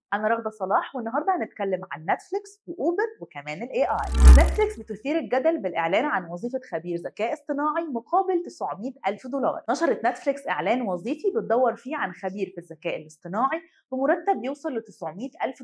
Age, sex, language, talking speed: 20-39, female, Arabic, 155 wpm